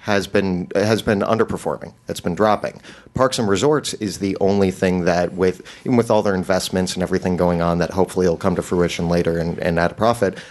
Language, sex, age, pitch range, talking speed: English, male, 30-49, 90-105 Hz, 215 wpm